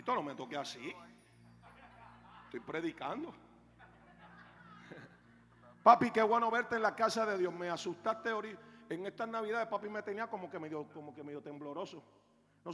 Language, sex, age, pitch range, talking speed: Spanish, male, 50-69, 160-245 Hz, 155 wpm